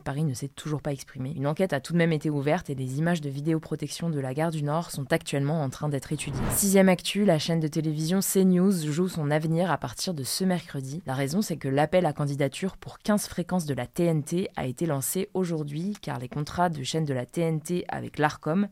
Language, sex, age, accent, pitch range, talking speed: French, female, 20-39, French, 140-175 Hz, 230 wpm